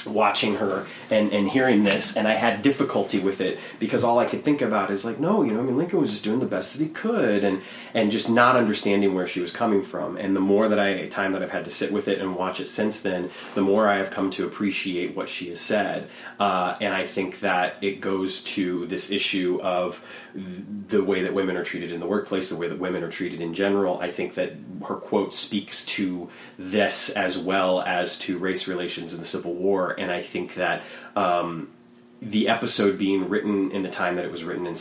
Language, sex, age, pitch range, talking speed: English, male, 30-49, 90-100 Hz, 235 wpm